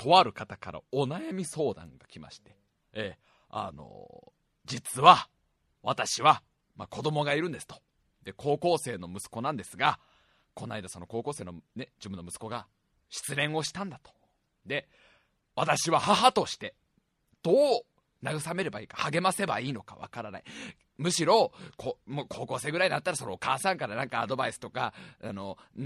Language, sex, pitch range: Japanese, male, 100-150 Hz